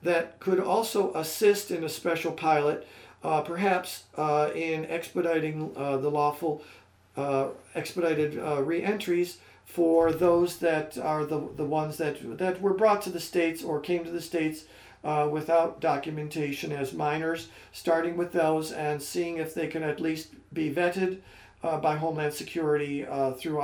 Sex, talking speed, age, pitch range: male, 155 wpm, 50-69, 150-180 Hz